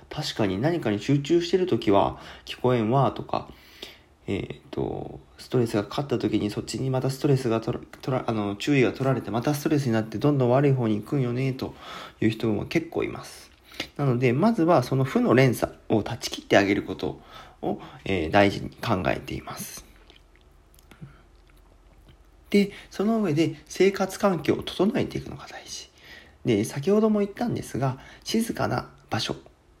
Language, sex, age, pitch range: Japanese, male, 40-59, 100-150 Hz